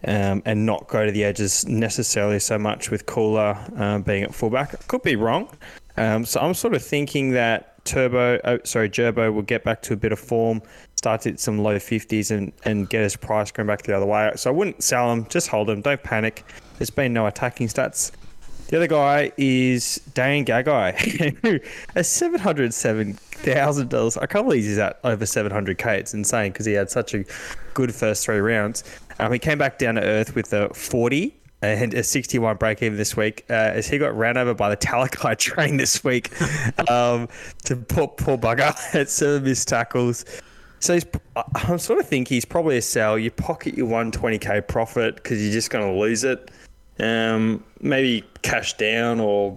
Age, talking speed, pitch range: 20-39, 195 wpm, 105-125 Hz